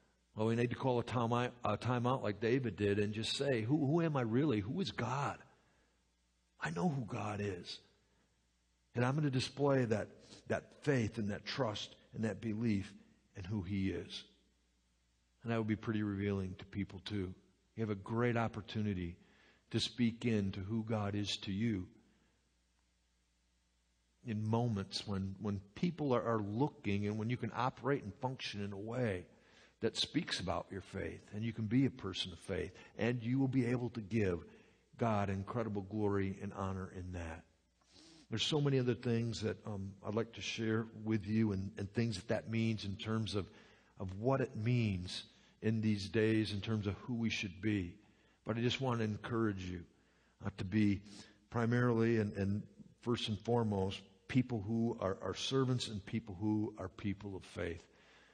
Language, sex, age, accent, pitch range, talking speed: English, male, 60-79, American, 95-115 Hz, 180 wpm